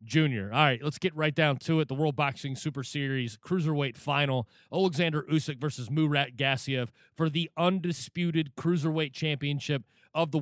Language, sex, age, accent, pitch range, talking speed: English, male, 30-49, American, 130-160 Hz, 160 wpm